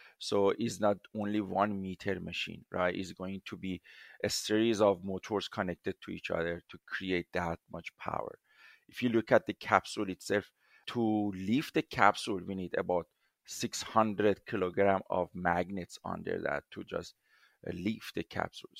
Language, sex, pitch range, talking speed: English, male, 95-110 Hz, 160 wpm